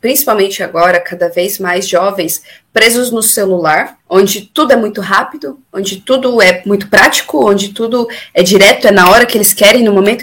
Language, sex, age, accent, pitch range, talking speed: Portuguese, female, 20-39, Brazilian, 185-220 Hz, 180 wpm